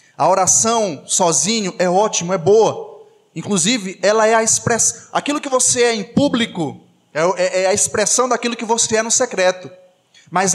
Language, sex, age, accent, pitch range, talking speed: Portuguese, male, 20-39, Brazilian, 210-260 Hz, 160 wpm